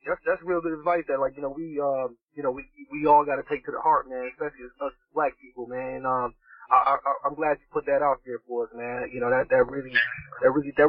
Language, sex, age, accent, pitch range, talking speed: English, male, 20-39, American, 135-205 Hz, 270 wpm